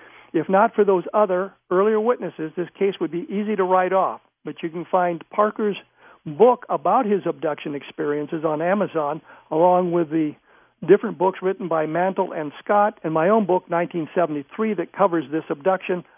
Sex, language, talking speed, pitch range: male, English, 170 wpm, 160-205 Hz